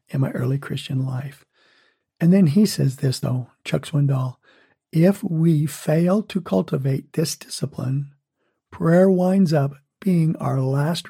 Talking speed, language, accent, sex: 140 wpm, English, American, male